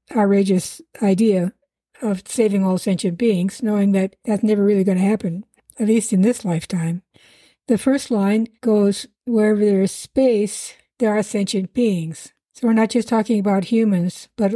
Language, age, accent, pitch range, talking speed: English, 60-79, American, 185-220 Hz, 165 wpm